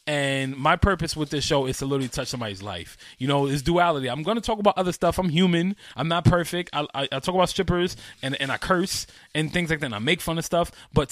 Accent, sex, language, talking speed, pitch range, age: American, male, English, 265 wpm, 130-175 Hz, 20-39